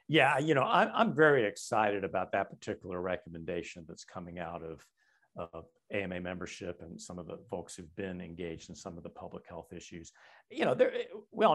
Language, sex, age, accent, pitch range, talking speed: English, male, 50-69, American, 95-125 Hz, 190 wpm